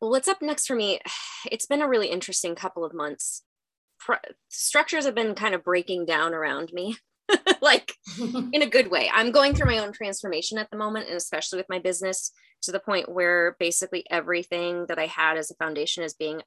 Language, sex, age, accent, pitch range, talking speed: English, female, 20-39, American, 165-215 Hz, 205 wpm